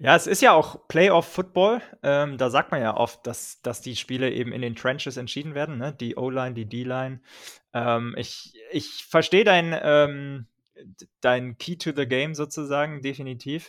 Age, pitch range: 20-39, 120-145 Hz